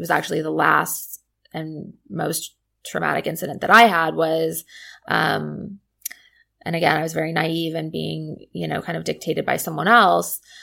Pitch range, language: 160-190 Hz, English